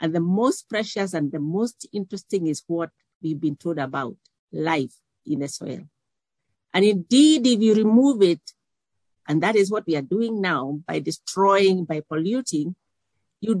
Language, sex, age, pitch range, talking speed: English, female, 50-69, 145-195 Hz, 165 wpm